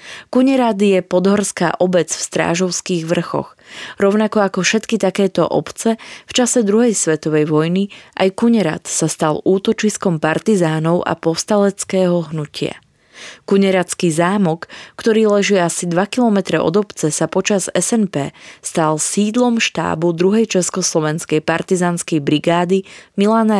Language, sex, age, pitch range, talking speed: Slovak, female, 20-39, 165-205 Hz, 115 wpm